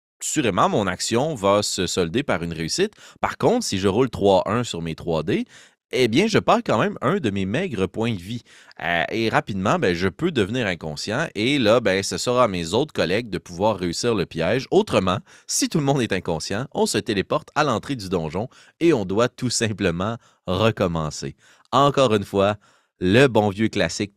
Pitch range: 95-135 Hz